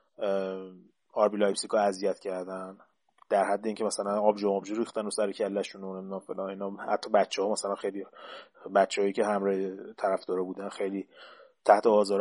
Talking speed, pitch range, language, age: 160 wpm, 100-125 Hz, Persian, 30-49